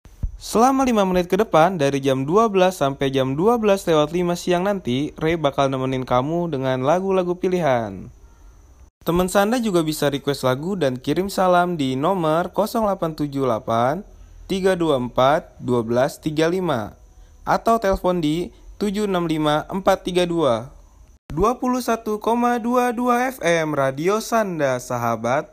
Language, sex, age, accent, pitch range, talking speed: Indonesian, male, 20-39, native, 130-180 Hz, 110 wpm